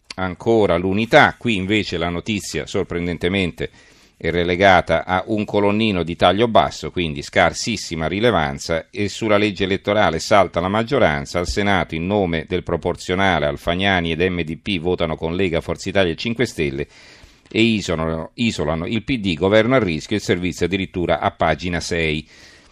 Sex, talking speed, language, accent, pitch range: male, 150 wpm, Italian, native, 85-105 Hz